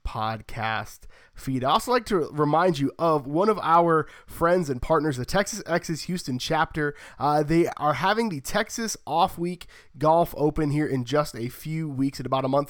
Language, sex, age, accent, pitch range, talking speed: English, male, 20-39, American, 130-160 Hz, 190 wpm